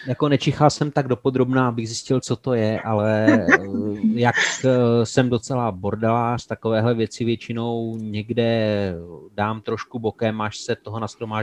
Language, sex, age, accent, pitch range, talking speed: Czech, male, 30-49, native, 110-130 Hz, 135 wpm